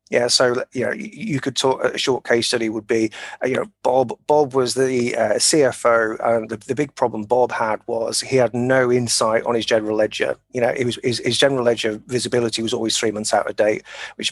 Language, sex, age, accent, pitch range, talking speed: English, male, 30-49, British, 110-130 Hz, 225 wpm